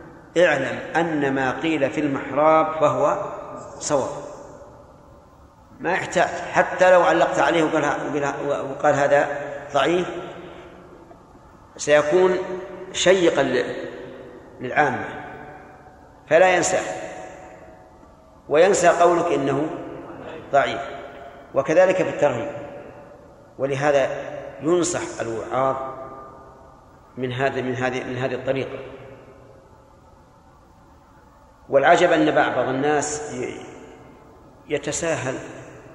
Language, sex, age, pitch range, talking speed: Arabic, male, 50-69, 135-165 Hz, 75 wpm